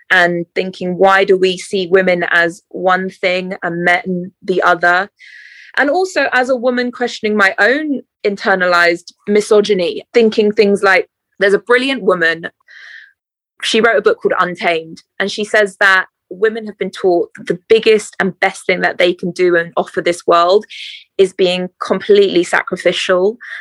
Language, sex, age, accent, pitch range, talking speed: English, female, 20-39, British, 180-225 Hz, 160 wpm